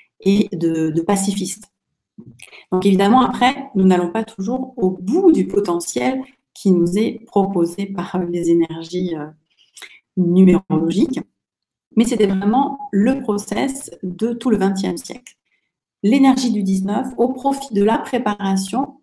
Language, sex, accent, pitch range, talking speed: French, female, French, 185-235 Hz, 130 wpm